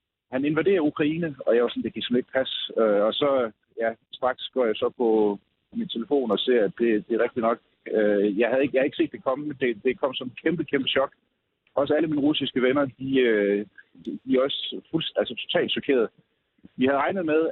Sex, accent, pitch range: male, native, 115-145 Hz